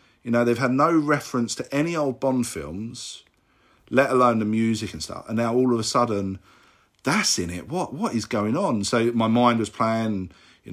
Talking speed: 205 wpm